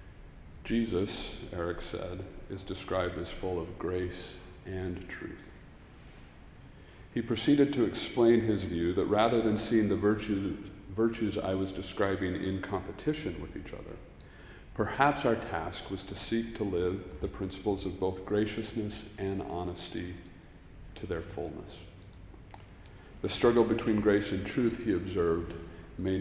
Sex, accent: male, American